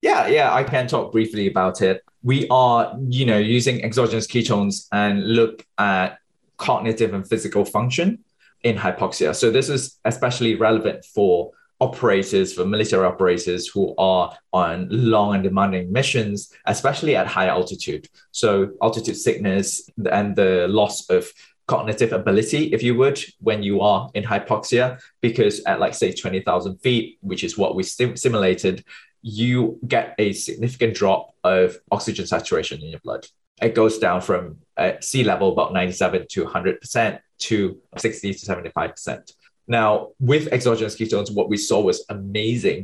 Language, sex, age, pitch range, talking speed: English, male, 20-39, 95-125 Hz, 155 wpm